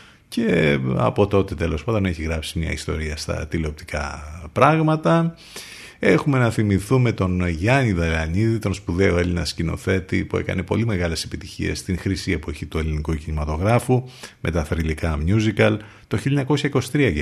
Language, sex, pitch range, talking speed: Greek, male, 80-110 Hz, 135 wpm